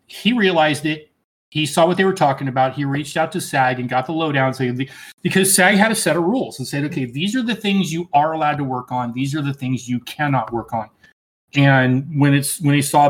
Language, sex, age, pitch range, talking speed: English, male, 30-49, 130-160 Hz, 245 wpm